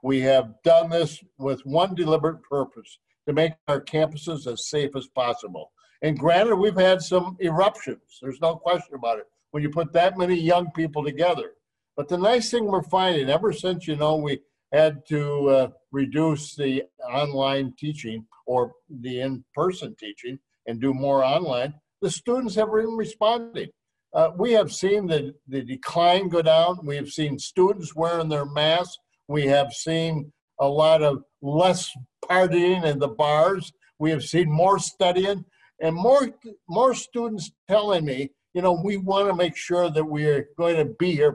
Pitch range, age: 140-185 Hz, 50-69